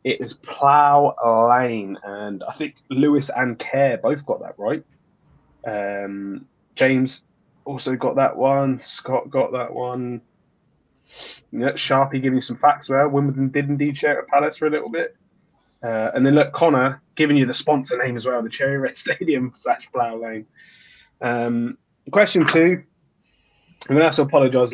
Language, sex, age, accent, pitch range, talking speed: English, male, 20-39, British, 115-150 Hz, 170 wpm